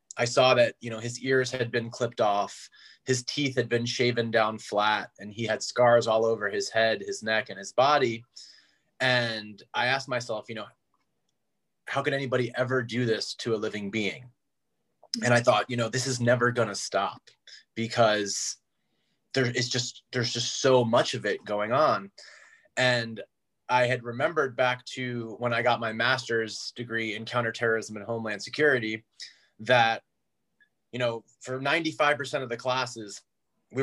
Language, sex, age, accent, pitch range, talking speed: English, male, 30-49, American, 115-130 Hz, 170 wpm